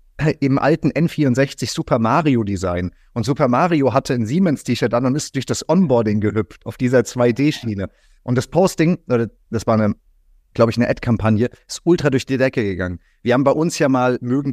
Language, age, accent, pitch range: German, 30-49, German, 105-130 Hz